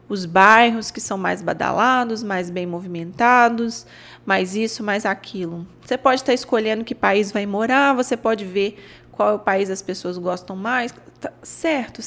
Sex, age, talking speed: female, 20-39, 165 wpm